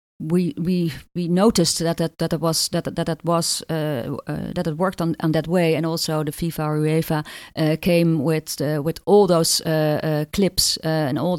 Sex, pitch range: female, 155-185 Hz